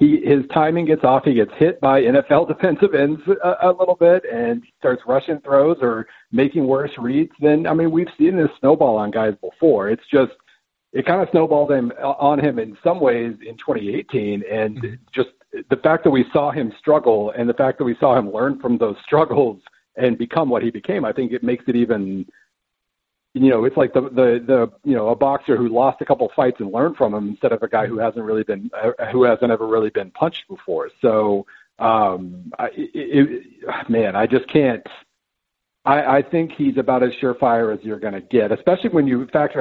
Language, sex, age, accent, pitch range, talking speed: English, male, 50-69, American, 115-150 Hz, 210 wpm